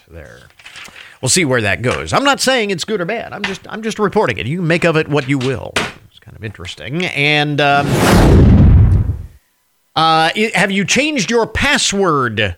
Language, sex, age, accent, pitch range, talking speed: English, male, 50-69, American, 125-185 Hz, 180 wpm